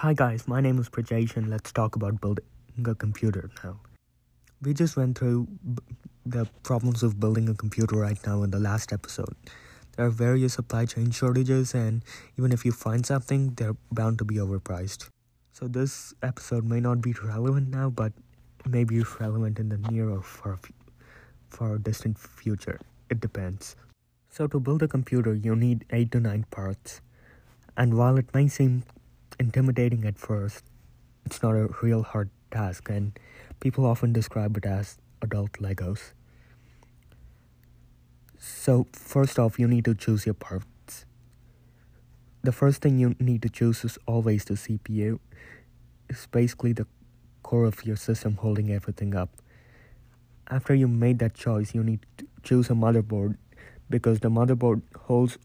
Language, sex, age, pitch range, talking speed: English, male, 20-39, 105-120 Hz, 160 wpm